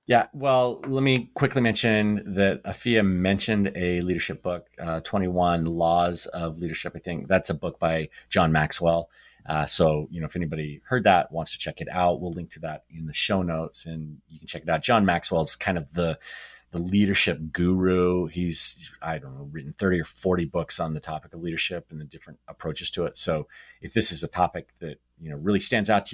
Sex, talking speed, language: male, 215 wpm, English